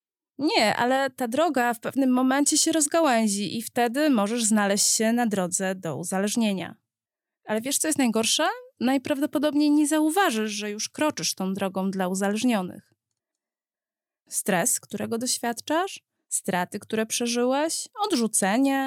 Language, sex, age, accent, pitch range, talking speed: Polish, female, 20-39, native, 200-270 Hz, 125 wpm